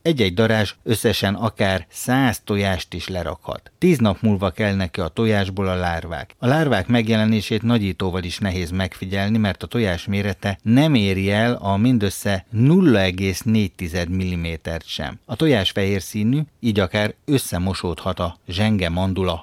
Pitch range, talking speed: 95-110 Hz, 140 wpm